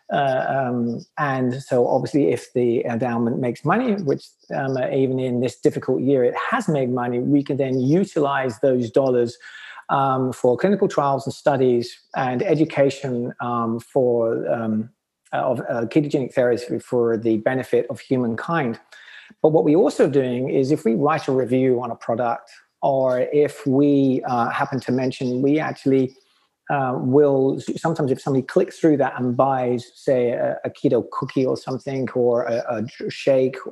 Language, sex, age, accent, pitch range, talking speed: English, male, 40-59, British, 125-150 Hz, 160 wpm